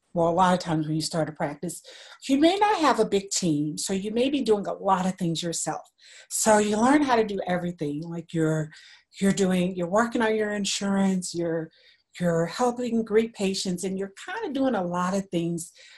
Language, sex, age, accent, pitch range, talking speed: English, female, 50-69, American, 170-220 Hz, 215 wpm